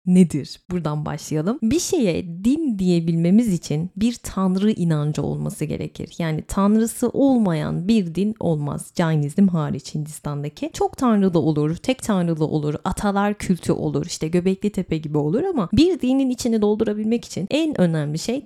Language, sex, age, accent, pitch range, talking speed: Turkish, female, 30-49, native, 160-220 Hz, 145 wpm